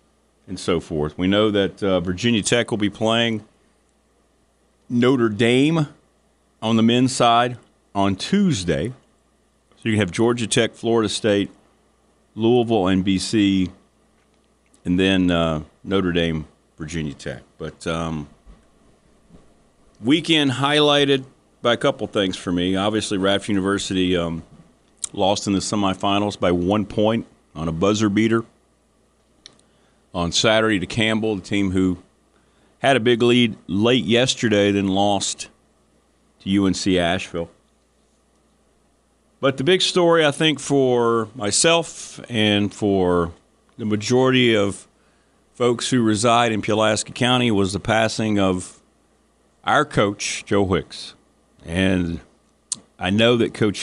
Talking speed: 125 wpm